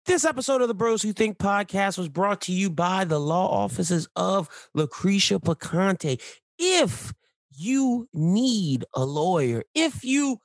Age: 30-49